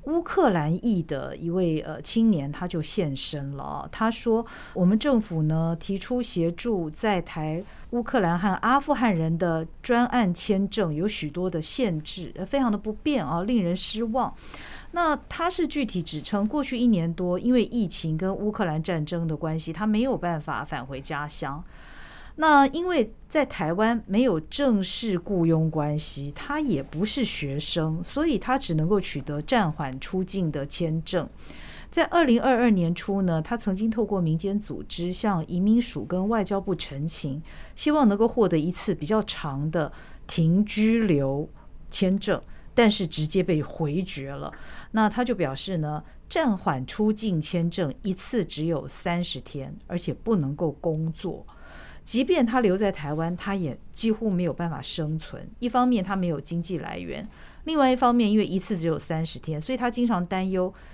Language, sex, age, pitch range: Chinese, female, 50-69, 160-225 Hz